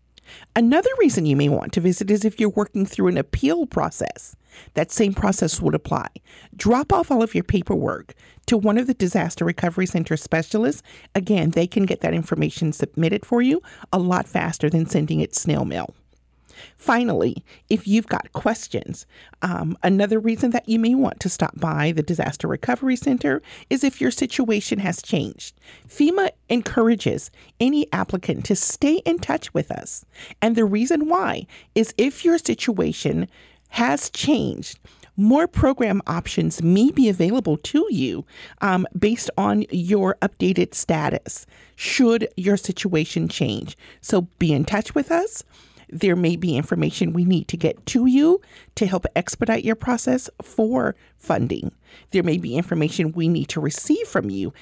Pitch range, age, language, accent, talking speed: 165-240 Hz, 40-59, English, American, 160 wpm